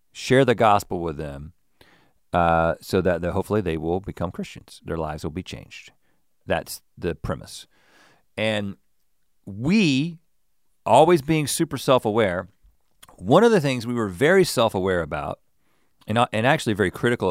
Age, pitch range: 40-59, 90-125 Hz